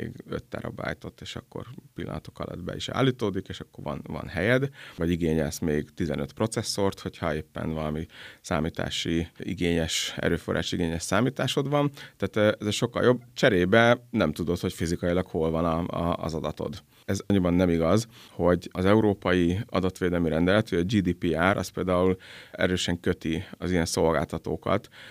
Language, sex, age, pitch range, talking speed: Hungarian, male, 30-49, 85-95 Hz, 150 wpm